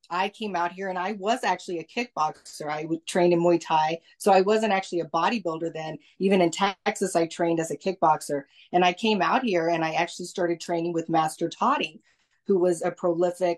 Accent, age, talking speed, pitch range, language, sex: American, 30-49, 210 wpm, 165-190 Hz, English, female